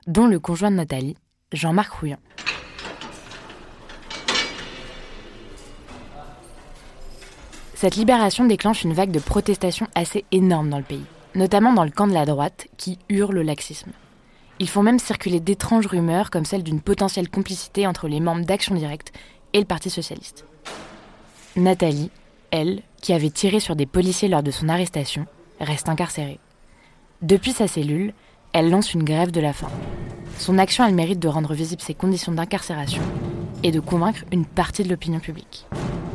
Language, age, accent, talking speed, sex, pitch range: French, 20-39, French, 155 wpm, female, 155-195 Hz